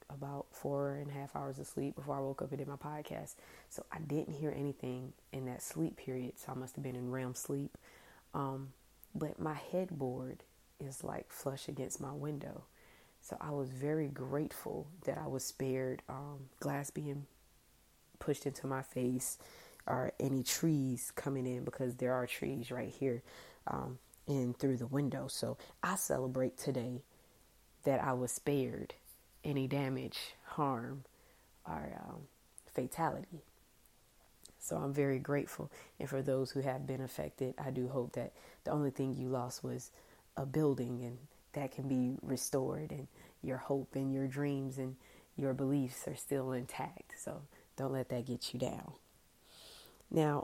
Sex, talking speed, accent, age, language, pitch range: female, 160 wpm, American, 20-39, English, 130-140 Hz